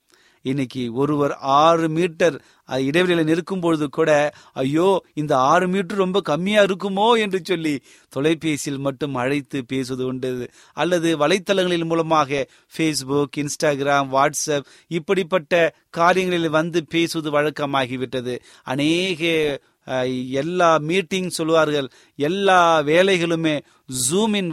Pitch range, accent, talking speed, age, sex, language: 140-180 Hz, native, 95 wpm, 30-49, male, Tamil